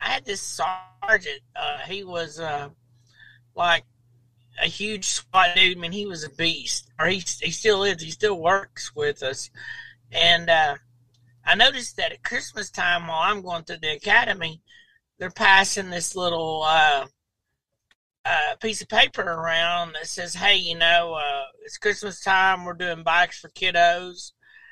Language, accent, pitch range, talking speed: English, American, 150-190 Hz, 165 wpm